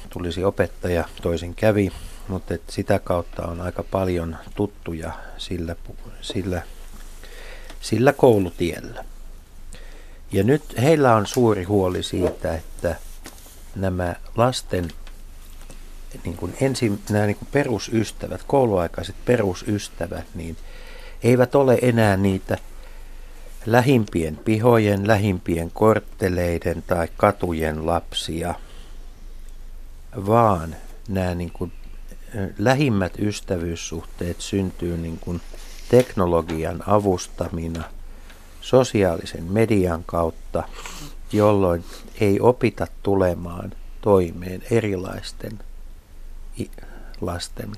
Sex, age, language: male, 60-79, Finnish